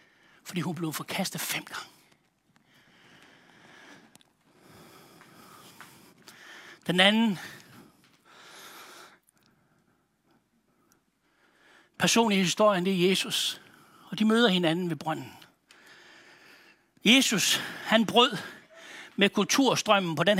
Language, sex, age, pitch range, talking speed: Danish, male, 60-79, 180-270 Hz, 75 wpm